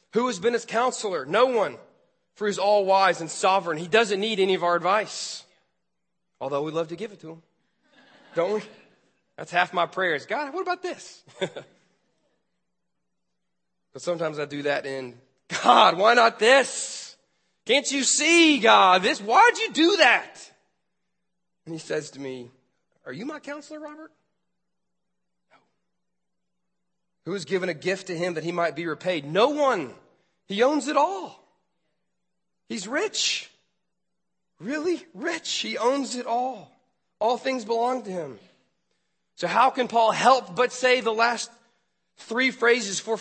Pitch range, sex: 175-250 Hz, male